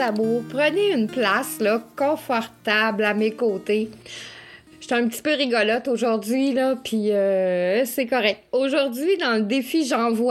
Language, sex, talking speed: French, female, 135 wpm